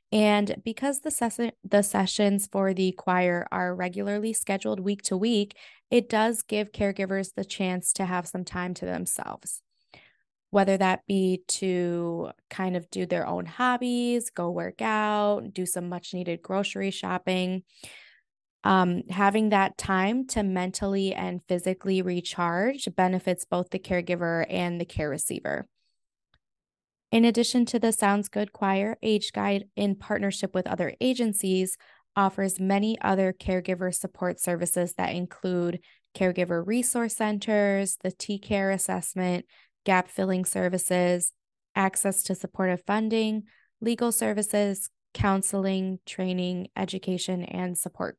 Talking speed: 125 wpm